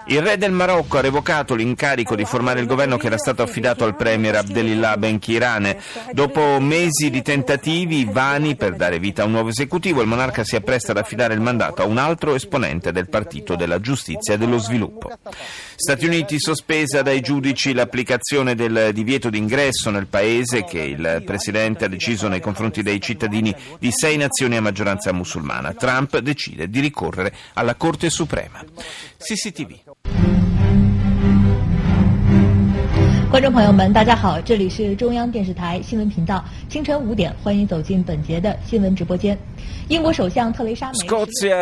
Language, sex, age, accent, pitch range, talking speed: Italian, male, 40-59, native, 110-160 Hz, 125 wpm